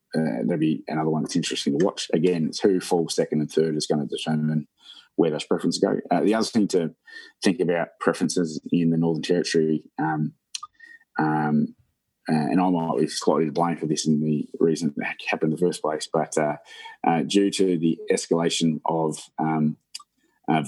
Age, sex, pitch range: 20-39, male, 75-85 Hz